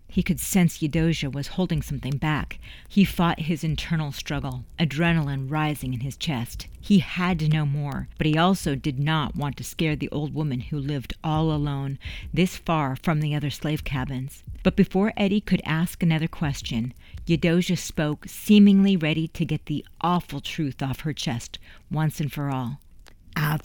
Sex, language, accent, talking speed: female, English, American, 175 wpm